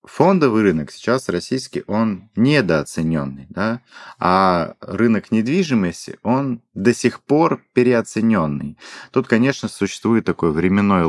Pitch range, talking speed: 80-105 Hz, 110 wpm